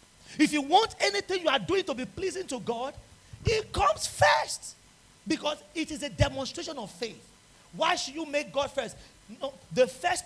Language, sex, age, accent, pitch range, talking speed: English, male, 40-59, Nigerian, 230-310 Hz, 180 wpm